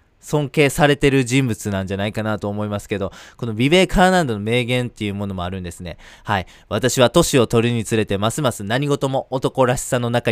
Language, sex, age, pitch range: Japanese, male, 20-39, 105-135 Hz